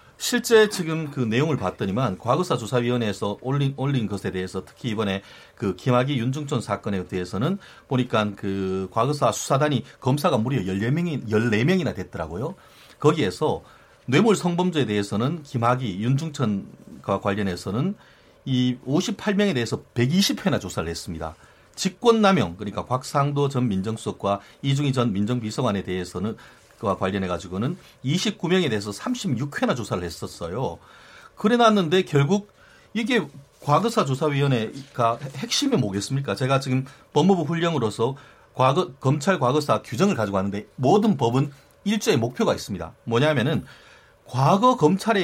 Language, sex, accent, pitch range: Korean, male, native, 110-170 Hz